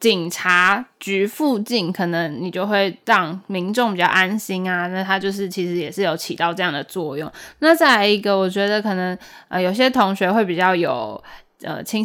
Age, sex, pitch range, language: 10-29, female, 180-230 Hz, Chinese